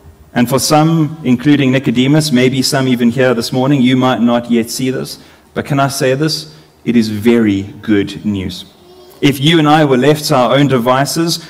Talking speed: 195 wpm